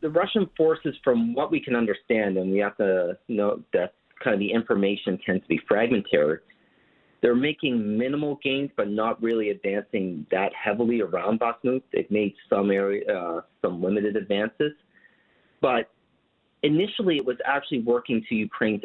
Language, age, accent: English, 40-59, American